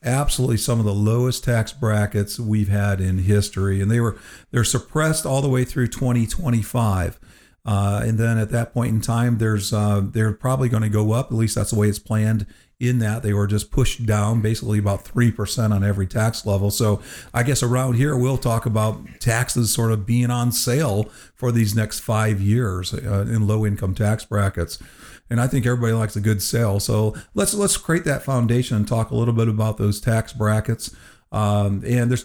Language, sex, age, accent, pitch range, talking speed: English, male, 50-69, American, 105-120 Hz, 200 wpm